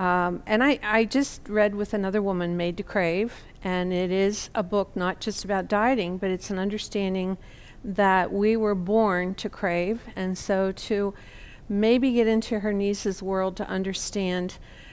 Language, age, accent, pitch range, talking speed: English, 50-69, American, 190-215 Hz, 170 wpm